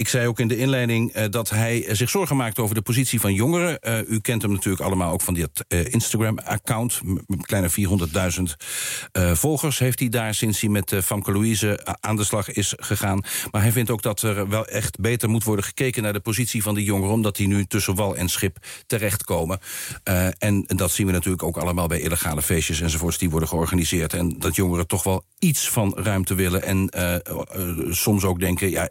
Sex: male